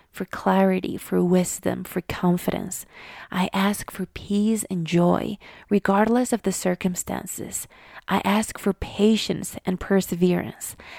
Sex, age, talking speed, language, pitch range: female, 30-49, 120 wpm, English, 185-210 Hz